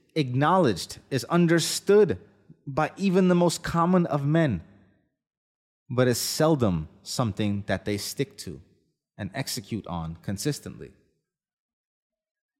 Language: English